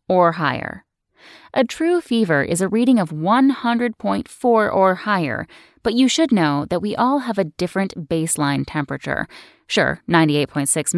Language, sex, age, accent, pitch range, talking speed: English, female, 10-29, American, 145-210 Hz, 140 wpm